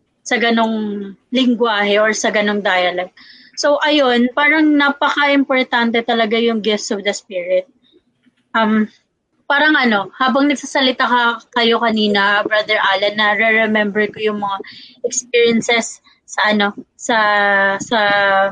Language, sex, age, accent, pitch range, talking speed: Filipino, female, 20-39, native, 220-265 Hz, 115 wpm